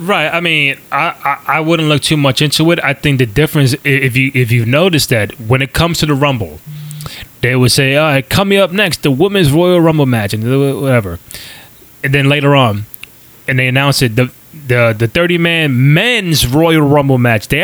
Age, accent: 20-39, American